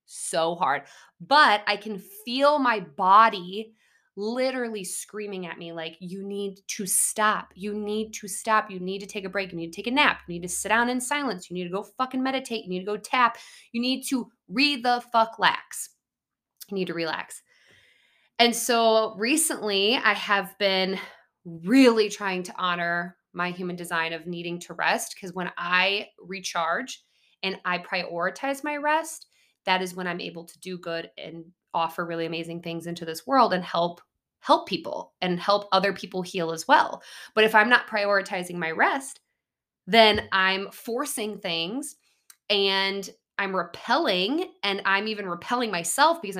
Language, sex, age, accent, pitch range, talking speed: English, female, 20-39, American, 180-235 Hz, 175 wpm